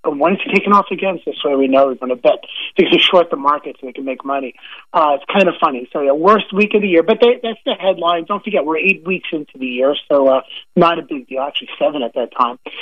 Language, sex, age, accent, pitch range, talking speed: English, male, 30-49, American, 150-200 Hz, 280 wpm